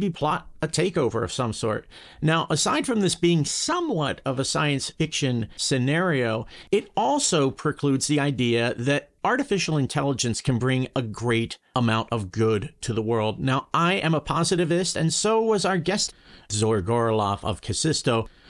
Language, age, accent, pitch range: English, 50-69, American, 115-155 Hz